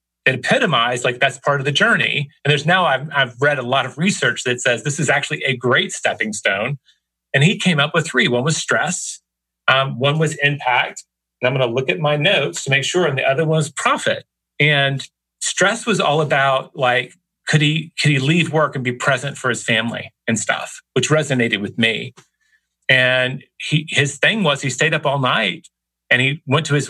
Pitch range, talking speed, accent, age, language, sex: 125-160 Hz, 215 wpm, American, 40-59, English, male